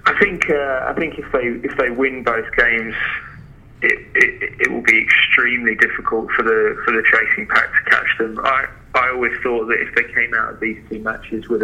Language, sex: English, male